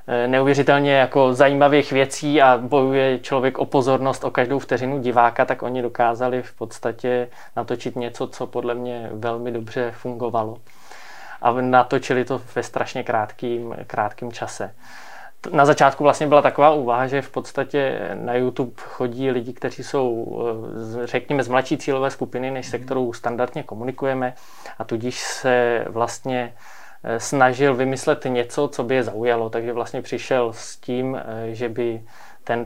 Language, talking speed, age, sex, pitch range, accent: Czech, 145 wpm, 20-39, male, 120-135 Hz, native